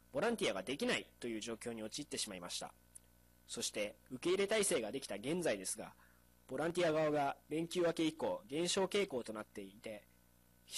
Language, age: Japanese, 20-39